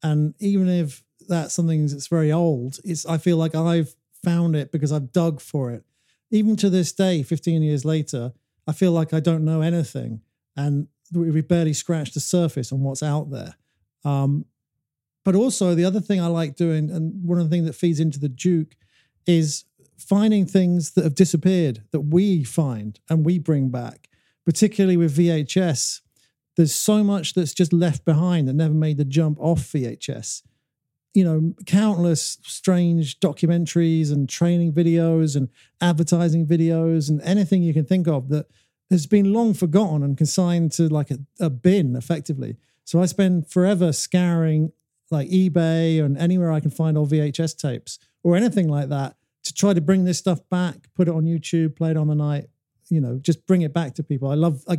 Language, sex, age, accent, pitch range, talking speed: English, male, 50-69, British, 145-175 Hz, 185 wpm